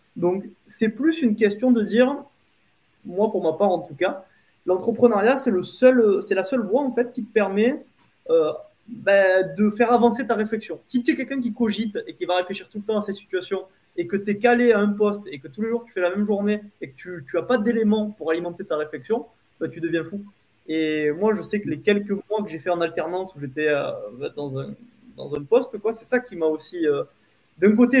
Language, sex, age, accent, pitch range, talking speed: French, male, 20-39, French, 180-240 Hz, 240 wpm